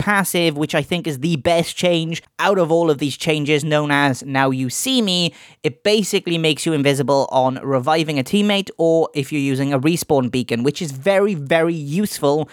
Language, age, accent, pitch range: English, 20-39, British, 140-170 Hz